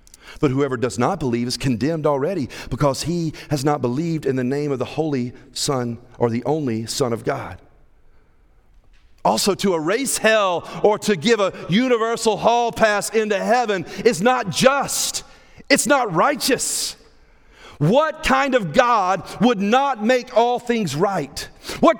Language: English